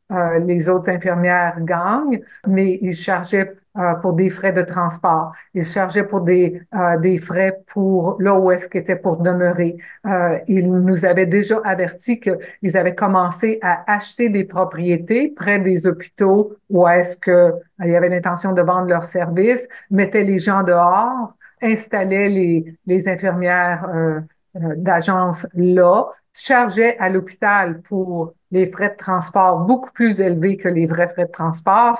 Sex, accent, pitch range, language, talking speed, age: female, Canadian, 180-205 Hz, French, 160 wpm, 50-69